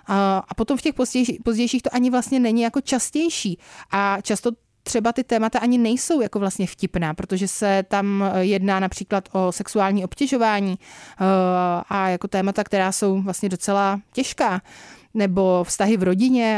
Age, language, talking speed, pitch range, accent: 30-49, Czech, 150 wpm, 190-215 Hz, native